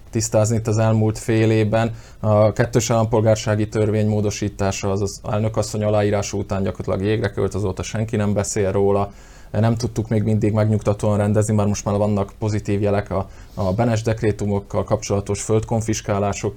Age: 20-39